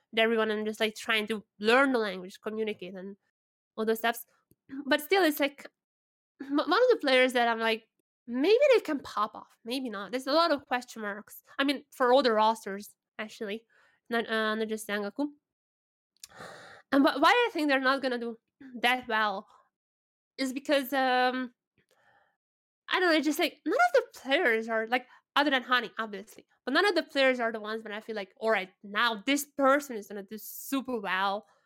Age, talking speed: 20-39, 195 wpm